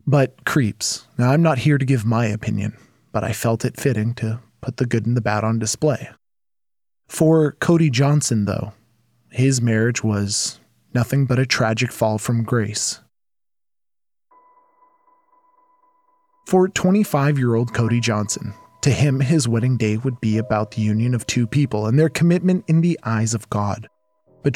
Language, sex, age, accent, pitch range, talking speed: English, male, 20-39, American, 110-140 Hz, 155 wpm